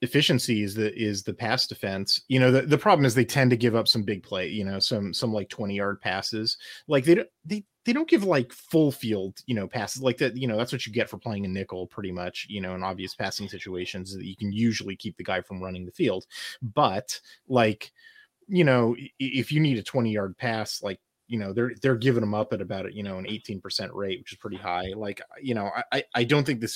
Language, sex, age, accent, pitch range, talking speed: English, male, 30-49, American, 105-135 Hz, 250 wpm